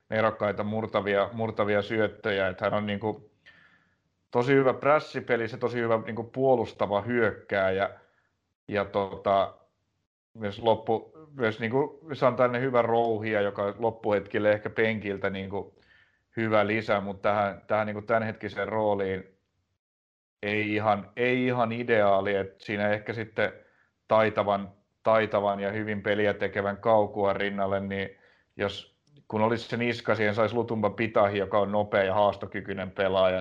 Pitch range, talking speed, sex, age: 100-115 Hz, 140 wpm, male, 30-49